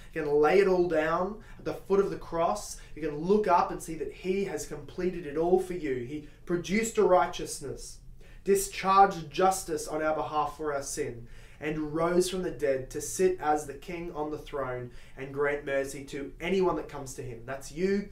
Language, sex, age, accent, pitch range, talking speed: English, male, 20-39, Australian, 150-185 Hz, 205 wpm